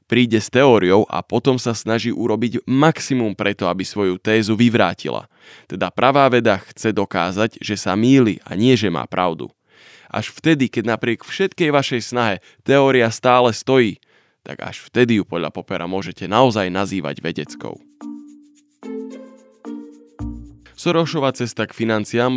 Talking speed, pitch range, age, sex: 135 wpm, 95-125 Hz, 20-39, male